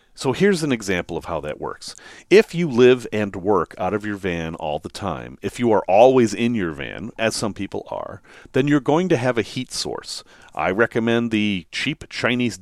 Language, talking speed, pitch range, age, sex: English, 210 wpm, 90-130 Hz, 40-59, male